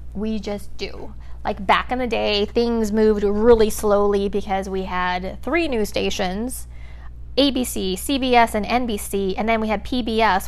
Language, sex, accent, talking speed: English, female, American, 155 wpm